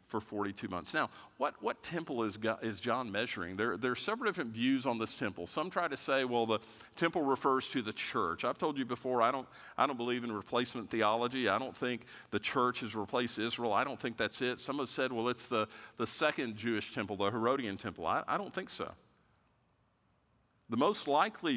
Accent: American